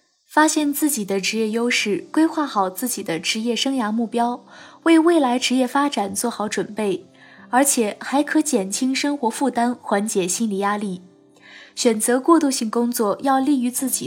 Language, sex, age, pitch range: Chinese, female, 20-39, 210-280 Hz